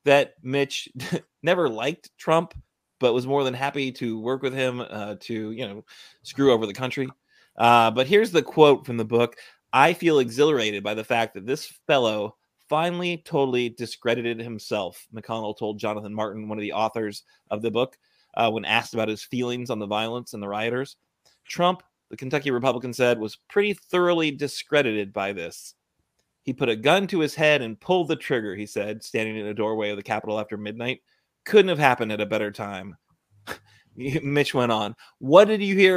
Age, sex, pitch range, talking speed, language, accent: 30-49, male, 110-140 Hz, 190 wpm, English, American